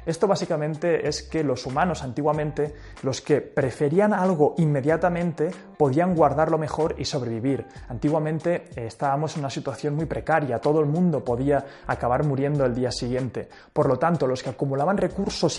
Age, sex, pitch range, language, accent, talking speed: 20-39, male, 130-165 Hz, English, Spanish, 160 wpm